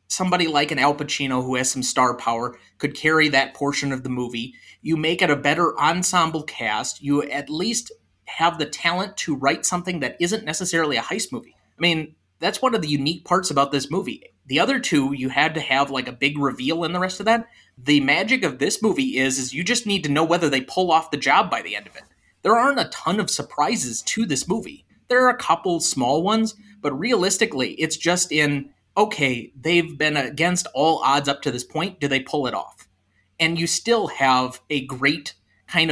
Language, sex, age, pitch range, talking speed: English, male, 30-49, 135-175 Hz, 220 wpm